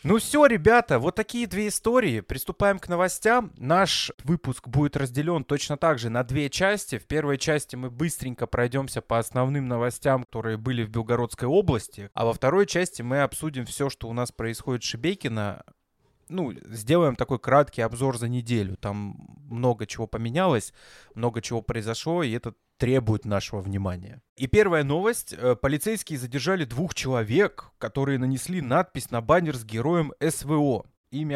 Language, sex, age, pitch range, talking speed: Russian, male, 20-39, 115-155 Hz, 155 wpm